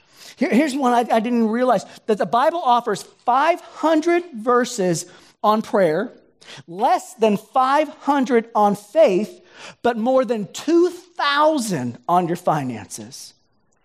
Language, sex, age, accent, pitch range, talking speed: English, male, 40-59, American, 200-255 Hz, 110 wpm